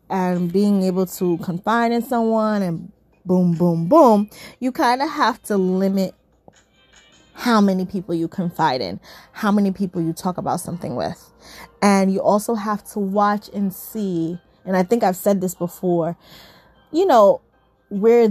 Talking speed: 160 wpm